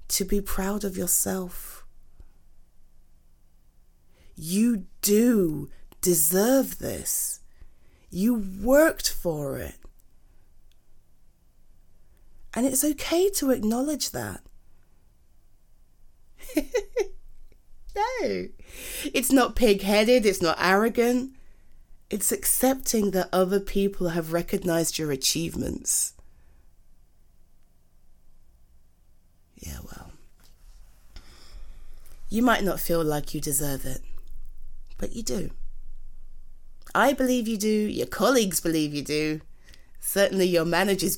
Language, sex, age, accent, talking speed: English, female, 30-49, British, 90 wpm